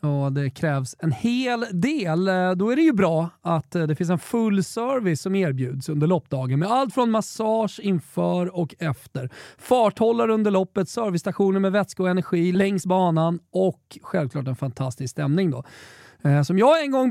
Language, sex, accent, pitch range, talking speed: Swedish, male, native, 160-220 Hz, 170 wpm